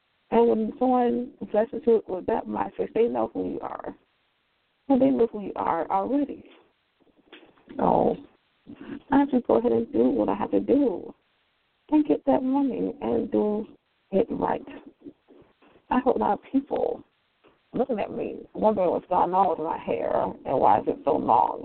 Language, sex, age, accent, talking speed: English, female, 40-59, American, 170 wpm